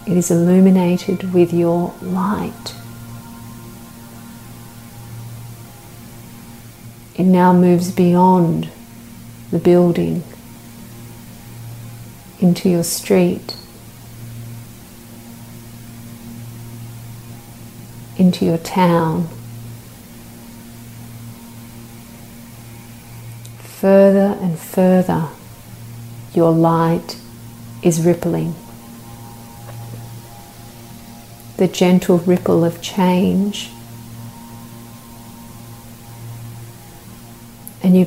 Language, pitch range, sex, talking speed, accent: English, 115-175 Hz, female, 50 wpm, Australian